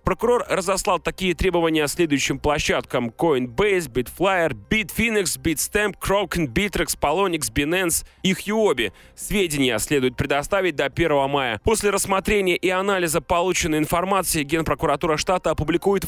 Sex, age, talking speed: male, 30-49, 120 wpm